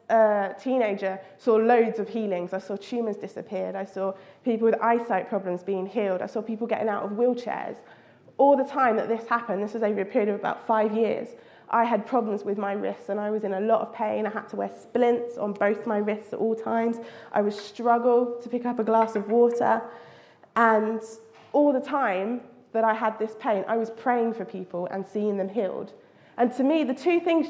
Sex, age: female, 20-39